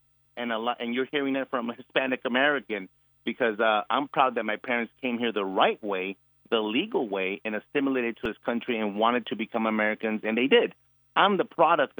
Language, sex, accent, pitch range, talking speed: English, male, American, 115-155 Hz, 210 wpm